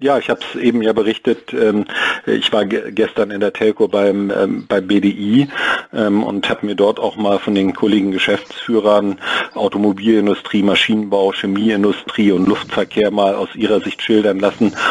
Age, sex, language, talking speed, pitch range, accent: 50-69, male, German, 150 wpm, 100-115 Hz, German